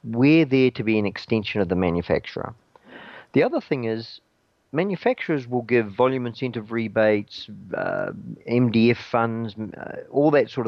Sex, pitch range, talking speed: male, 105-130 Hz, 145 wpm